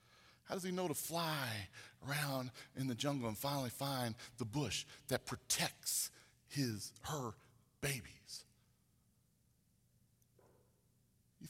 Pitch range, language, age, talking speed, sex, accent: 130-195 Hz, English, 40-59, 110 wpm, male, American